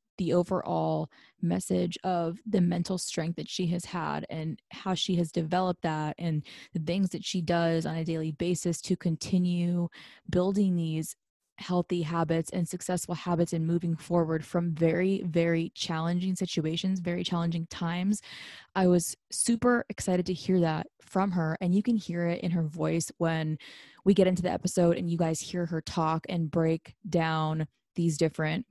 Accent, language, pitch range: American, English, 165-190 Hz